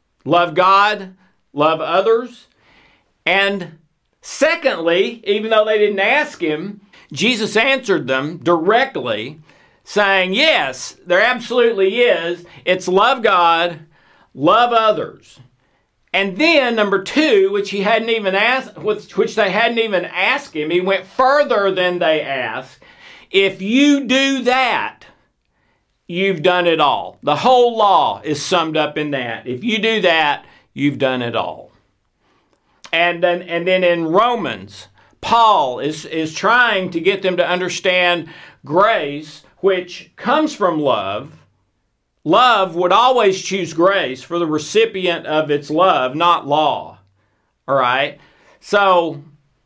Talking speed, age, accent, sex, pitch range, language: 130 wpm, 50-69, American, male, 160-225 Hz, English